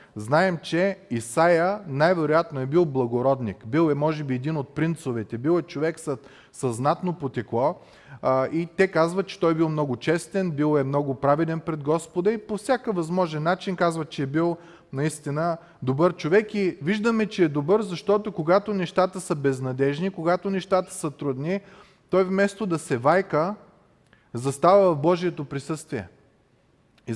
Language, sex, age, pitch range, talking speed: Bulgarian, male, 30-49, 130-180 Hz, 155 wpm